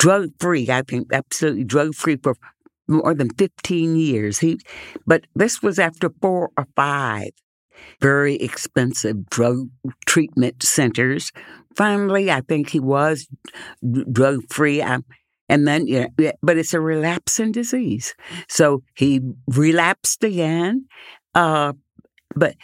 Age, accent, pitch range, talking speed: 60-79, American, 135-175 Hz, 125 wpm